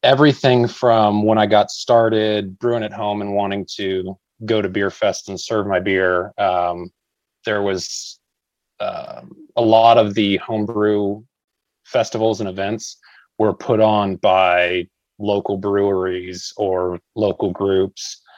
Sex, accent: male, American